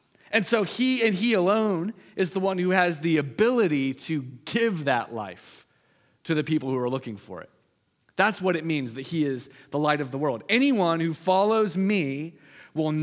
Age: 30-49